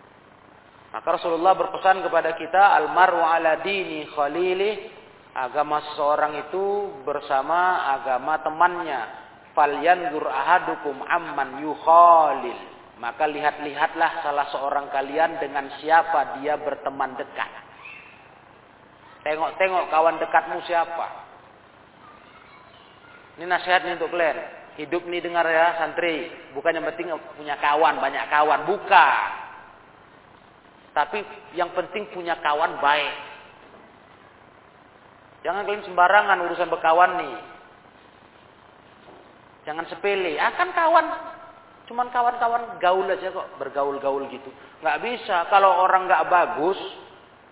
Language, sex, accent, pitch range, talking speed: Indonesian, male, native, 150-195 Hz, 90 wpm